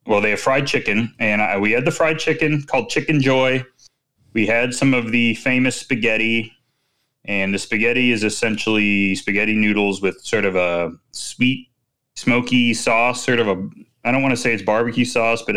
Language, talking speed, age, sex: English, 180 wpm, 20-39, male